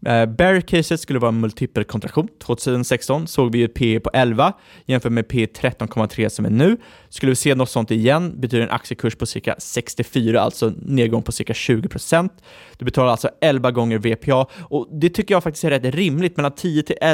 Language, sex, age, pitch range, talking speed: Swedish, male, 20-39, 115-155 Hz, 185 wpm